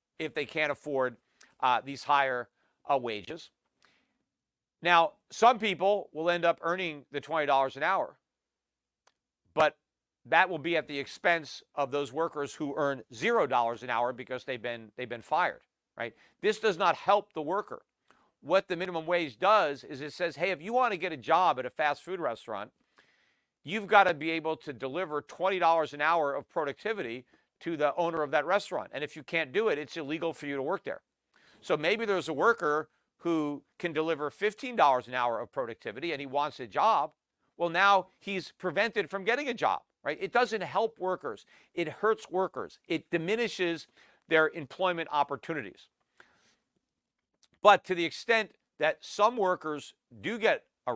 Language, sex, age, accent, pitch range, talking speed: English, male, 50-69, American, 145-190 Hz, 175 wpm